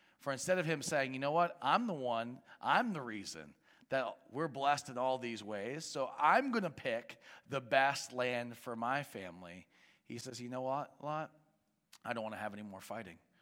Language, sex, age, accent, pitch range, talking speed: English, male, 40-59, American, 115-145 Hz, 205 wpm